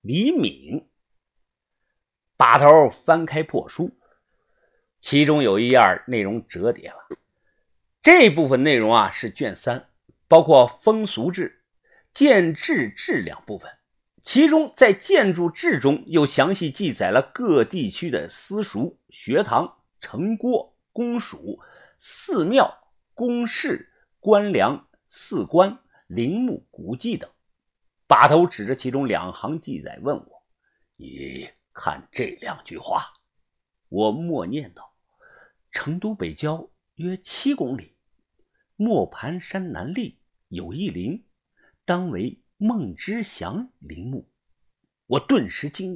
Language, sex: Chinese, male